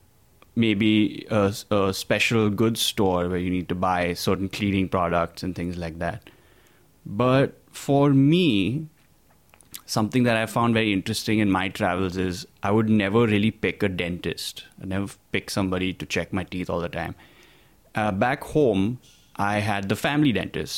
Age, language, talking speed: 20-39, English, 165 wpm